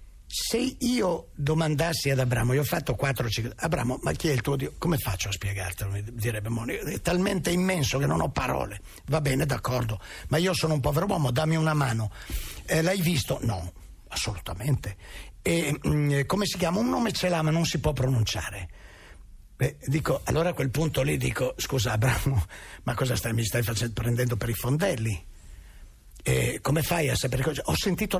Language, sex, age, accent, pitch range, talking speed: Italian, male, 50-69, native, 110-165 Hz, 190 wpm